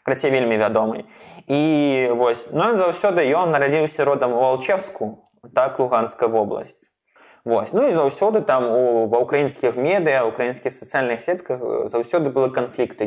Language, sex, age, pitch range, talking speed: Russian, male, 20-39, 115-145 Hz, 145 wpm